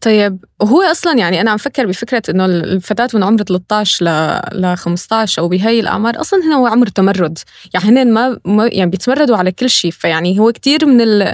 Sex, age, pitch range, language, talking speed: female, 20-39, 195-245 Hz, Arabic, 185 wpm